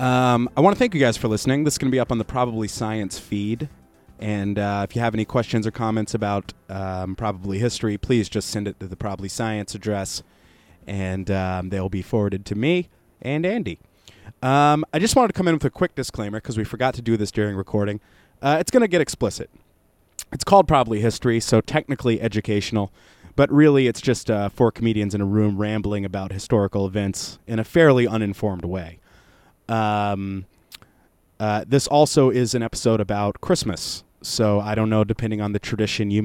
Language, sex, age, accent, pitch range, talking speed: English, male, 30-49, American, 100-120 Hz, 200 wpm